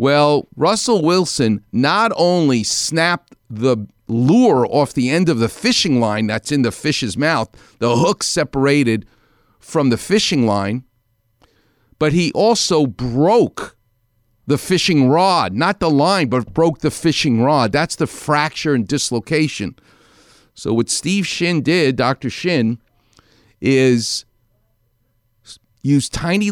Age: 50-69